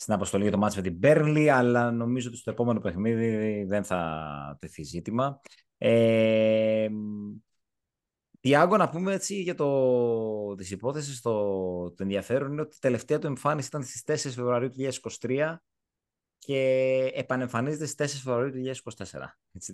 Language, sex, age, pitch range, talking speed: Greek, male, 20-39, 100-135 Hz, 135 wpm